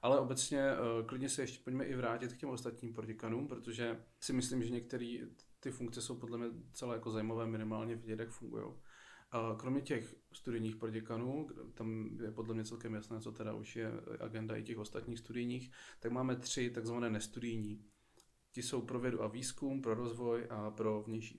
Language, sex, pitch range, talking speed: Czech, male, 110-120 Hz, 180 wpm